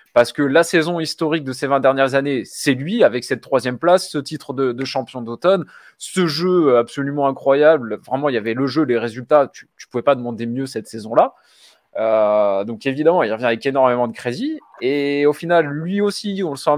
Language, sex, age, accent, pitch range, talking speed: French, male, 20-39, French, 115-160 Hz, 210 wpm